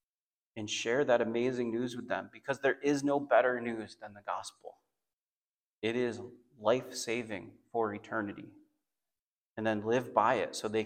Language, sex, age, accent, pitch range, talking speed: English, male, 30-49, American, 110-135 Hz, 155 wpm